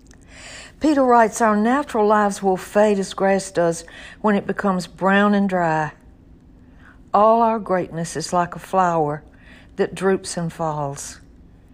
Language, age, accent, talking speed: English, 60-79, American, 140 wpm